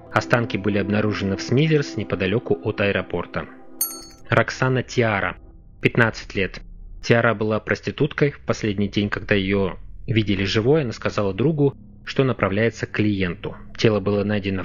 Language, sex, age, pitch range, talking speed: Russian, male, 20-39, 100-120 Hz, 130 wpm